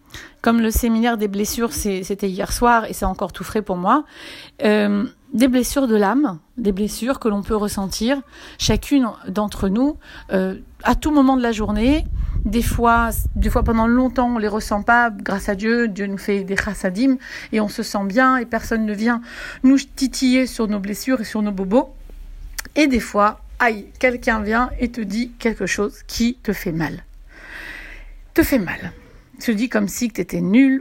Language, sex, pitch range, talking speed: French, female, 210-265 Hz, 195 wpm